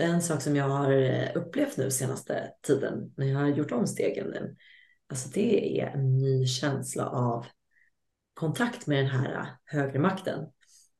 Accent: native